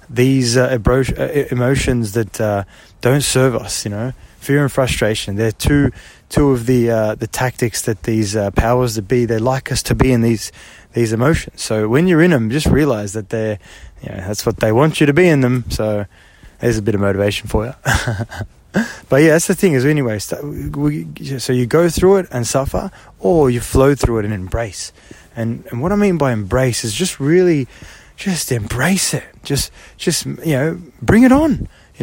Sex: male